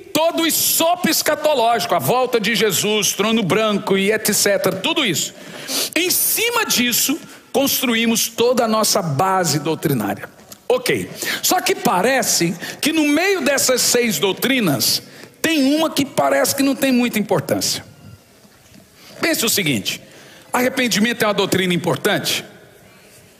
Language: Portuguese